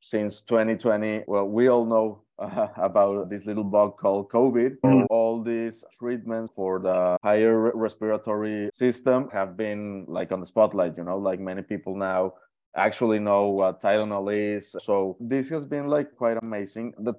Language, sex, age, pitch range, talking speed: English, male, 20-39, 100-115 Hz, 160 wpm